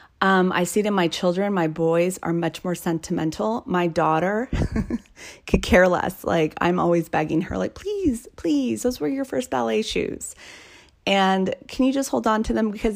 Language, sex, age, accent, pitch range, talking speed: English, female, 30-49, American, 160-200 Hz, 185 wpm